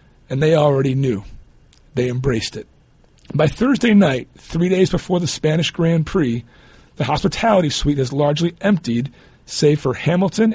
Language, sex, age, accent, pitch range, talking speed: English, male, 40-59, American, 130-175 Hz, 150 wpm